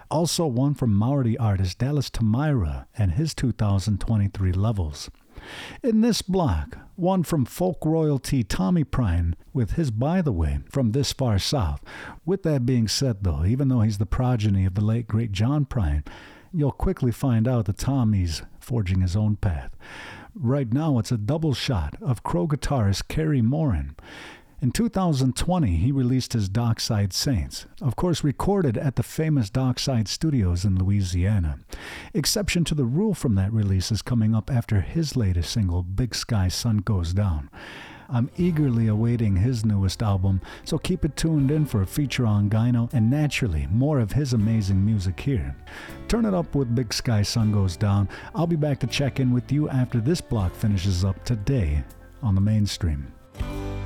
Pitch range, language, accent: 100-140 Hz, English, American